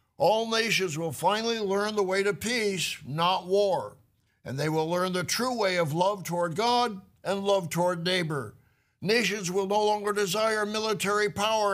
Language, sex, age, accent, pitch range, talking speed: English, male, 60-79, American, 170-205 Hz, 170 wpm